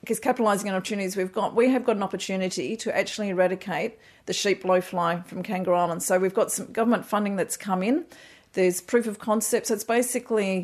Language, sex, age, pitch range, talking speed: English, female, 40-59, 175-205 Hz, 205 wpm